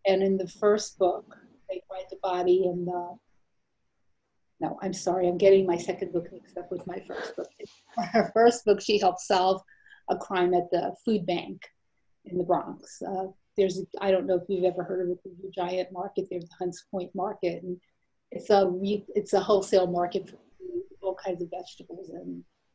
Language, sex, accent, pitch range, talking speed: English, female, American, 180-200 Hz, 195 wpm